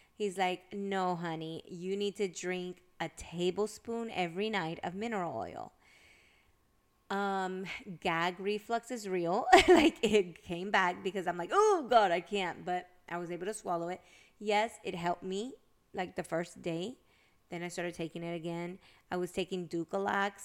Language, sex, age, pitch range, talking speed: English, female, 20-39, 175-205 Hz, 165 wpm